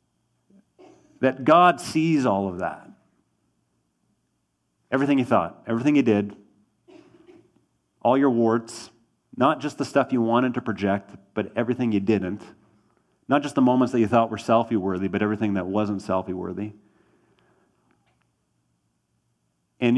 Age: 40-59